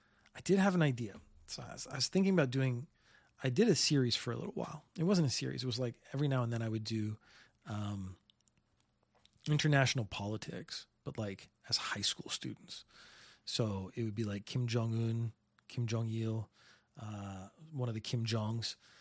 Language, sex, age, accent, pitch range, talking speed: English, male, 30-49, American, 115-145 Hz, 180 wpm